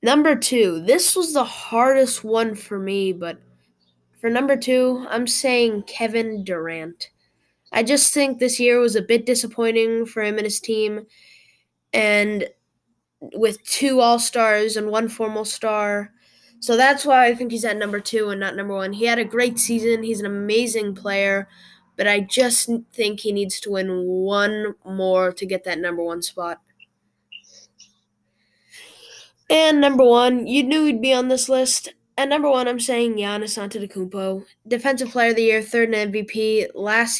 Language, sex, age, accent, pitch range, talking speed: English, female, 10-29, American, 200-245 Hz, 165 wpm